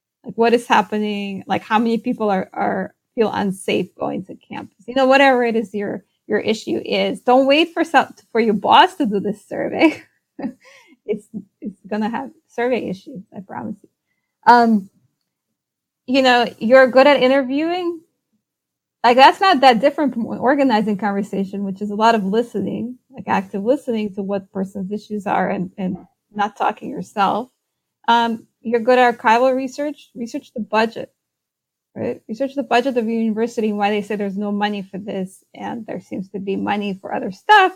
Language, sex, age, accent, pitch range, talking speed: English, female, 20-39, American, 205-255 Hz, 180 wpm